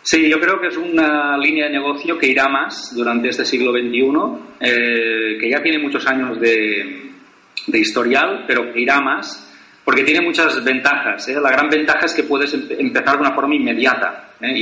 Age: 30-49